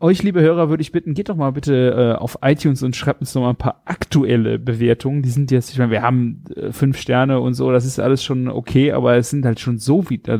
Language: German